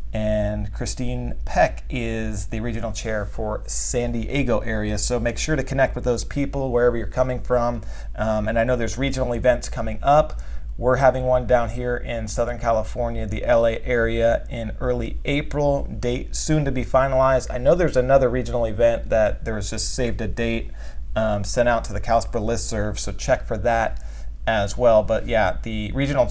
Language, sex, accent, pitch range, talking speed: English, male, American, 105-125 Hz, 185 wpm